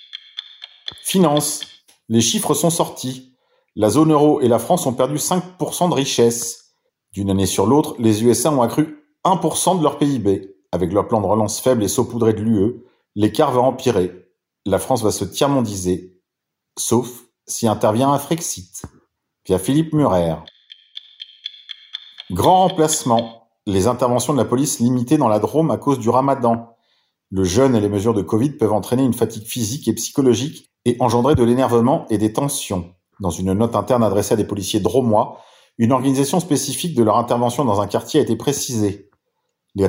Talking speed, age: 170 wpm, 40-59